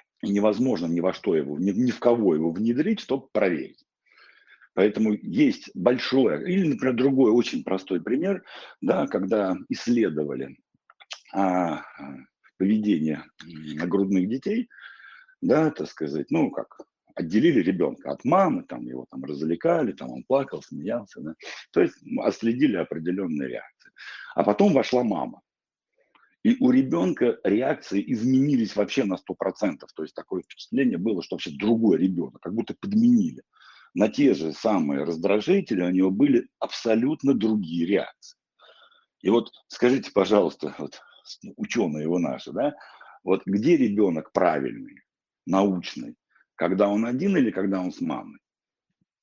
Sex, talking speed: male, 130 wpm